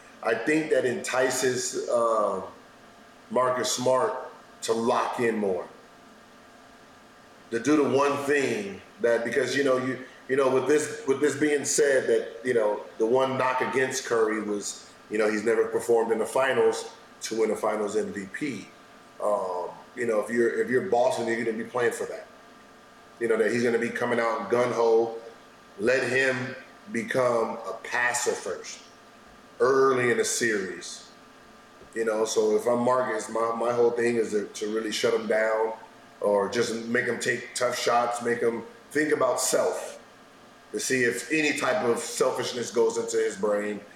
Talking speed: 170 wpm